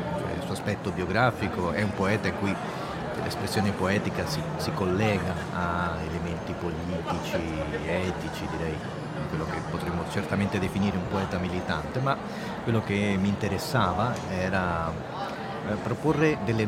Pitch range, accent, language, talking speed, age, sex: 90-110 Hz, native, Italian, 120 wpm, 40-59, male